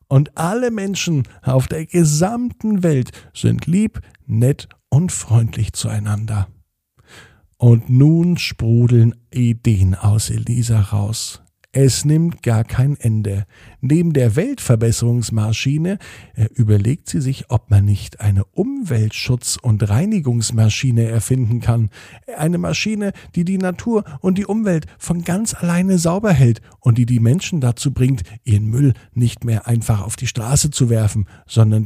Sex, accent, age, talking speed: male, German, 50-69, 130 wpm